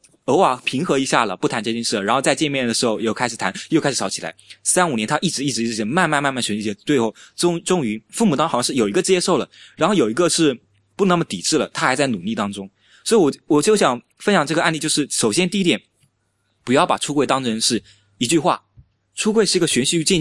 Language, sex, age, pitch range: Chinese, male, 20-39, 120-195 Hz